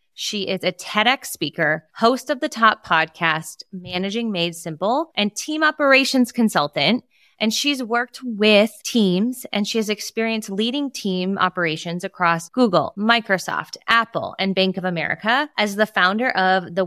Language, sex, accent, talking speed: English, female, American, 150 wpm